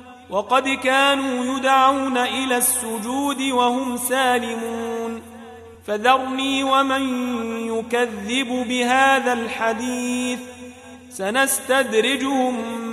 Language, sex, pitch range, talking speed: Arabic, male, 230-260 Hz, 60 wpm